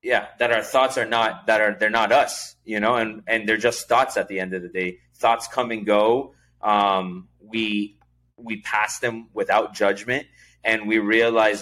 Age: 20-39